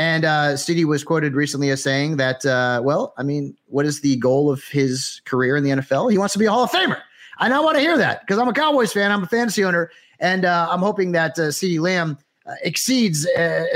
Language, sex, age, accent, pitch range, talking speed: English, male, 30-49, American, 130-175 Hz, 255 wpm